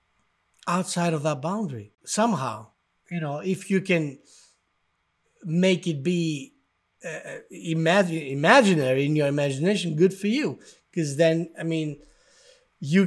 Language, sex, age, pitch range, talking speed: English, male, 50-69, 145-195 Hz, 120 wpm